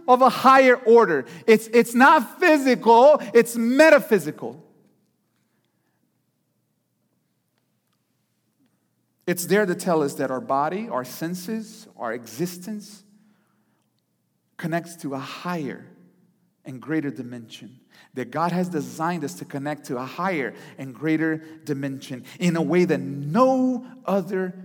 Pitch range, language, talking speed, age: 125-190 Hz, English, 115 wpm, 40-59